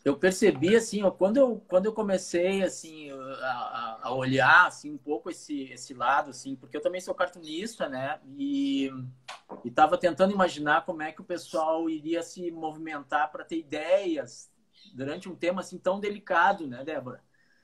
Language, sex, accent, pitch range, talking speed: Portuguese, male, Brazilian, 155-210 Hz, 165 wpm